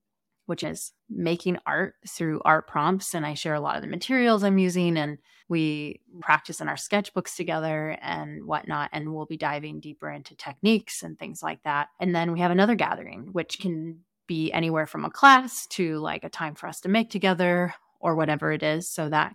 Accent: American